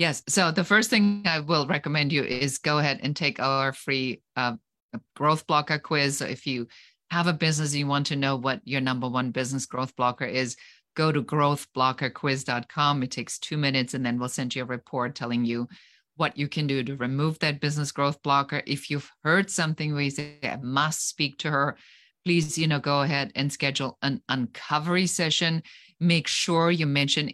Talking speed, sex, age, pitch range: 200 wpm, female, 40-59, 130-150 Hz